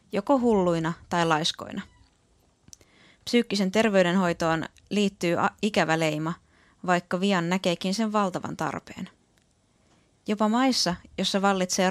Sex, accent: female, native